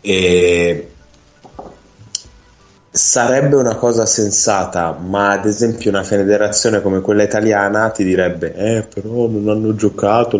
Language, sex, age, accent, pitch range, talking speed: Italian, male, 20-39, native, 90-105 Hz, 115 wpm